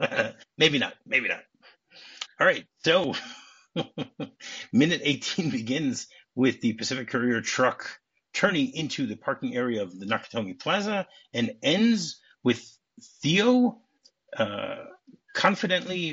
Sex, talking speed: male, 110 wpm